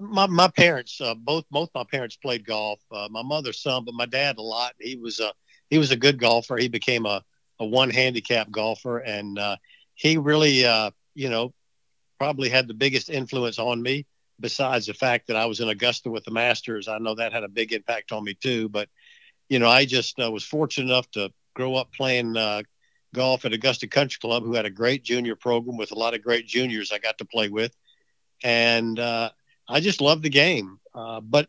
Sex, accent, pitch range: male, American, 115-140 Hz